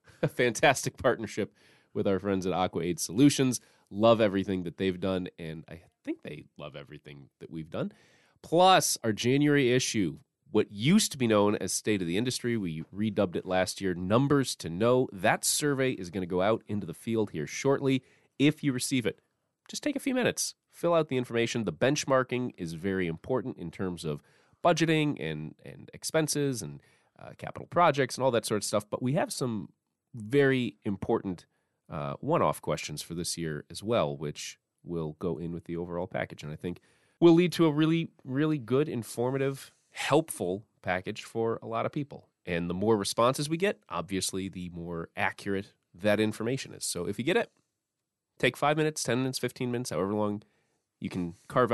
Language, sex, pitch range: English, male, 90-135 Hz